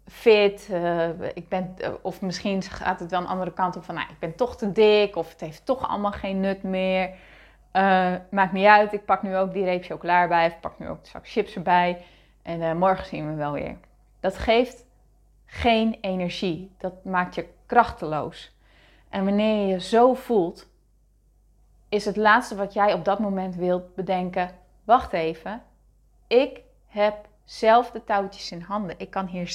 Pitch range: 180-215 Hz